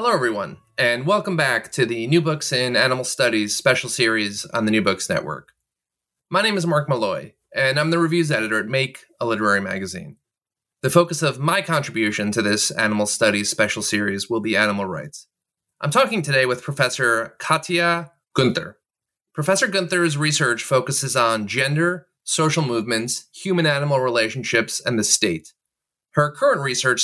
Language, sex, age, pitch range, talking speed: English, male, 30-49, 115-155 Hz, 160 wpm